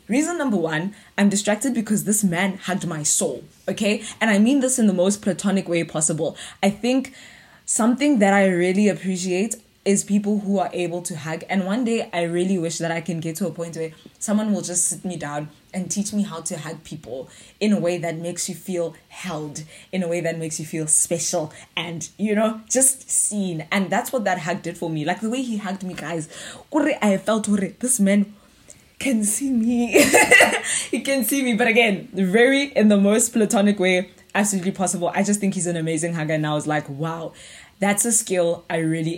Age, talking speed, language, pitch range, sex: 20-39, 210 wpm, English, 170-210 Hz, female